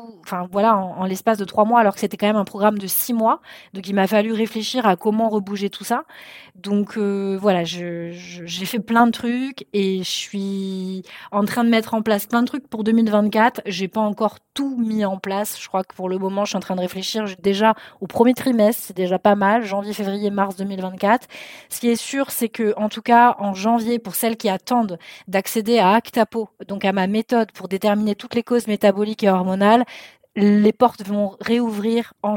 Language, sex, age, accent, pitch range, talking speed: French, female, 20-39, French, 195-235 Hz, 215 wpm